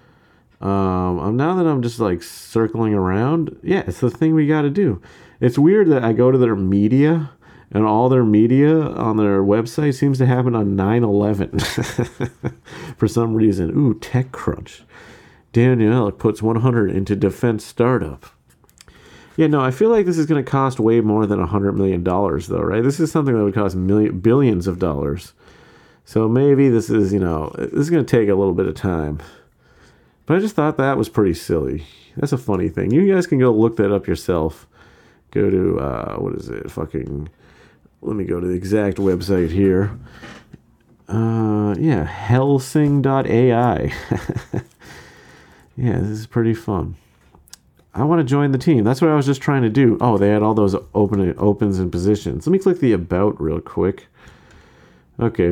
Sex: male